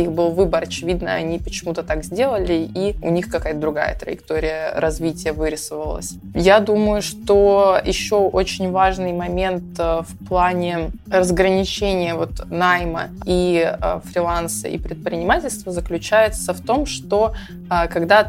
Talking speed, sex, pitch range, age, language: 120 wpm, female, 165-200 Hz, 20-39, Russian